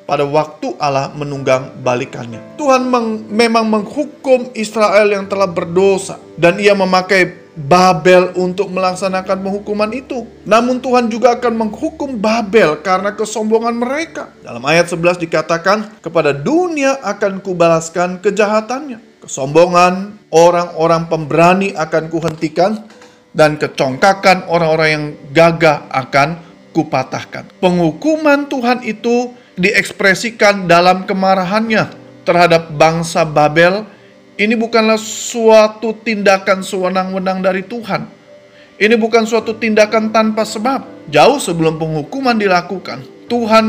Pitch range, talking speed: 165-220 Hz, 105 wpm